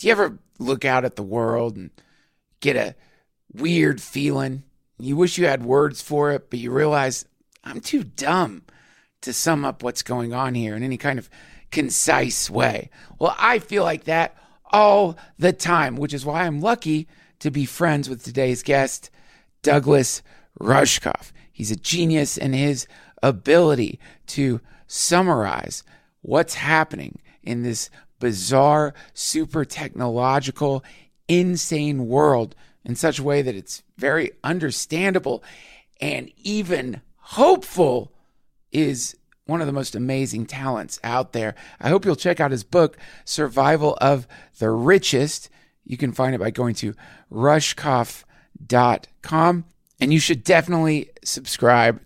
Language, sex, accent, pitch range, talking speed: English, male, American, 125-160 Hz, 140 wpm